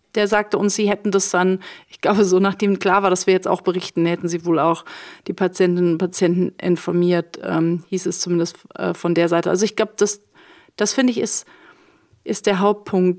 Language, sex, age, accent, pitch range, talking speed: German, female, 40-59, German, 190-215 Hz, 210 wpm